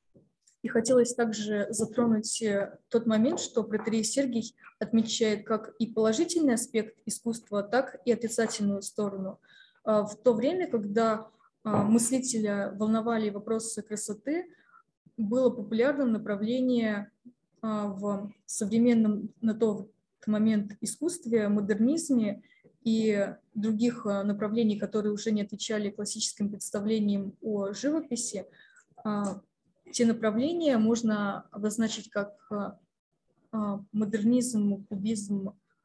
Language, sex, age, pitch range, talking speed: Russian, female, 20-39, 205-235 Hz, 90 wpm